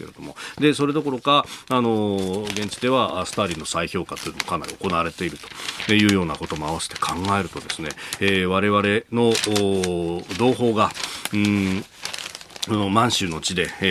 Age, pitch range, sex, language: 40-59, 95-115 Hz, male, Japanese